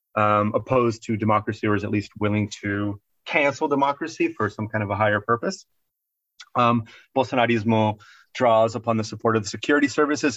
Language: English